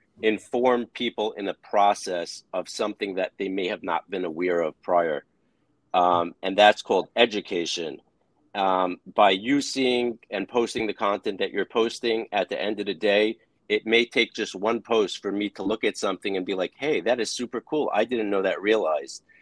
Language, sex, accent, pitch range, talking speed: English, male, American, 100-120 Hz, 195 wpm